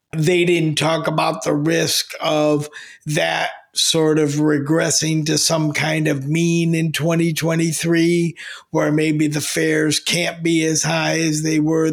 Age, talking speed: 50-69, 145 wpm